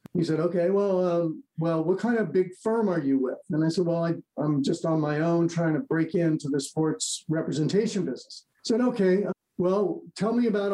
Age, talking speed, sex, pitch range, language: 50-69, 220 wpm, male, 165-200 Hz, English